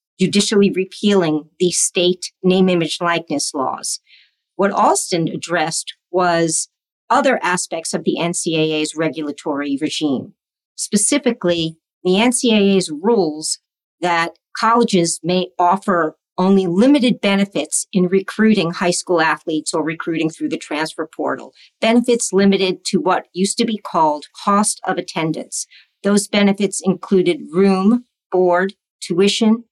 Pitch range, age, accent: 165-210 Hz, 50-69, American